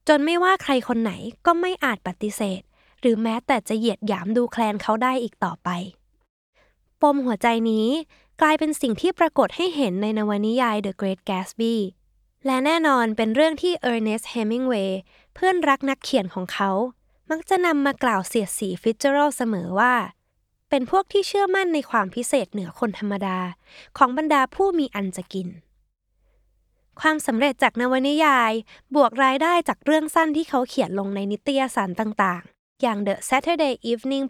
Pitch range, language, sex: 210-285 Hz, Thai, female